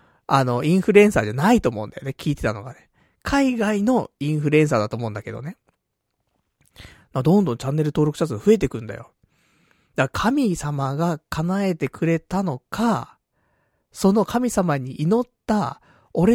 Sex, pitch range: male, 120-205 Hz